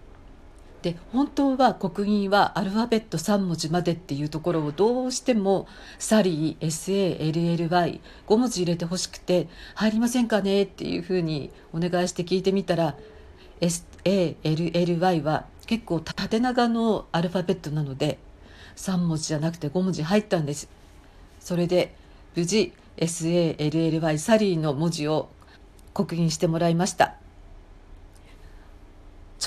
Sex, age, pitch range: female, 50-69, 150-195 Hz